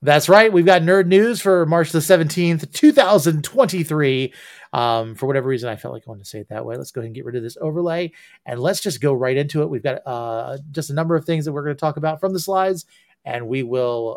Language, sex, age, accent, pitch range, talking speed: English, male, 30-49, American, 125-165 Hz, 260 wpm